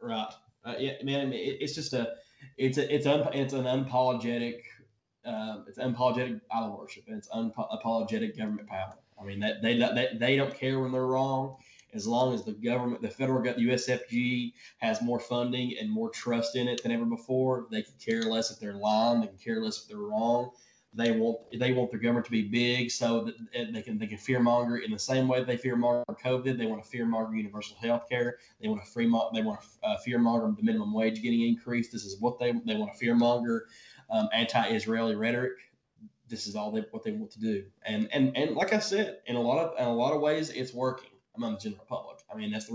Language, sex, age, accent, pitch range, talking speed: English, male, 10-29, American, 115-150 Hz, 215 wpm